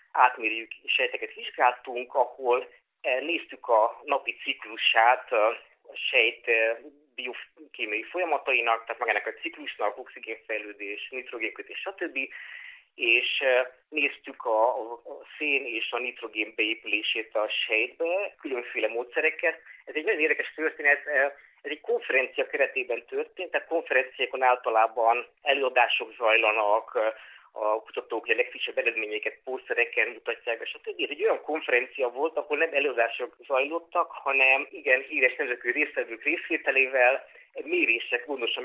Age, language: 30-49, Hungarian